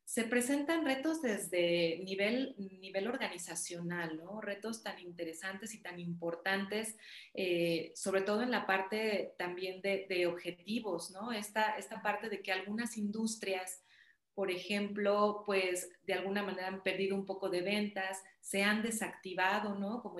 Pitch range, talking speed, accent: 185-215 Hz, 145 wpm, Mexican